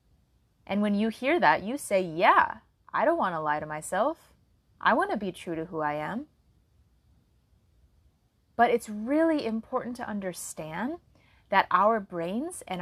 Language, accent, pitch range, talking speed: English, American, 195-280 Hz, 160 wpm